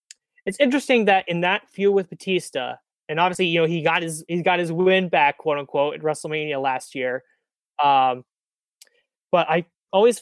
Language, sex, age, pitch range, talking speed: English, male, 20-39, 150-190 Hz, 175 wpm